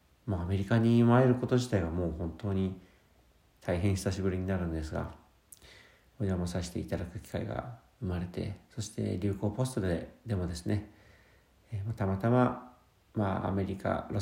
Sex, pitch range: male, 90-110 Hz